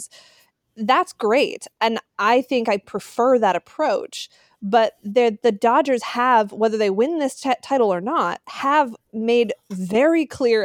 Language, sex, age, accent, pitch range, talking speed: English, female, 20-39, American, 195-245 Hz, 135 wpm